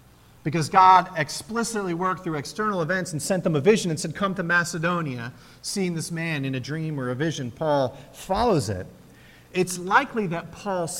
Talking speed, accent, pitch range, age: 180 wpm, American, 165-230 Hz, 40-59